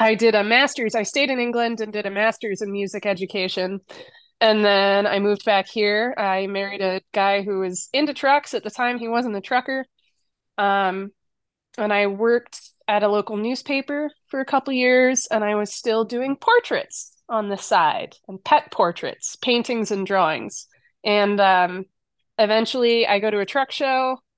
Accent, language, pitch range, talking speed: American, English, 200-250 Hz, 180 wpm